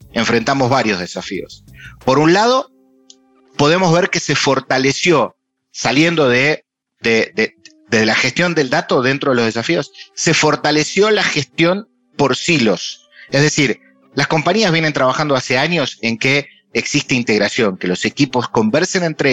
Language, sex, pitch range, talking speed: Spanish, male, 120-170 Hz, 145 wpm